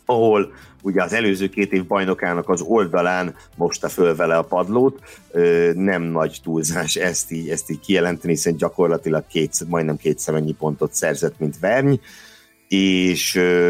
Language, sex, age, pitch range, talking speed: Hungarian, male, 60-79, 85-110 Hz, 145 wpm